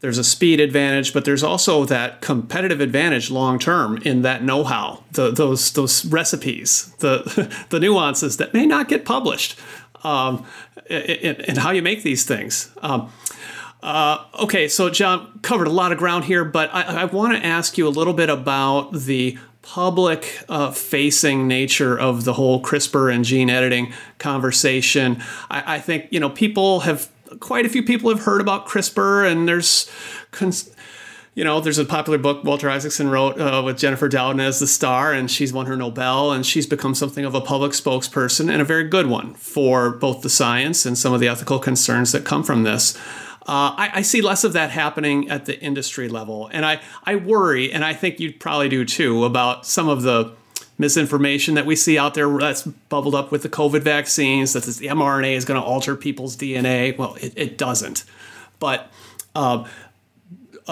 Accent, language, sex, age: American, English, male, 40-59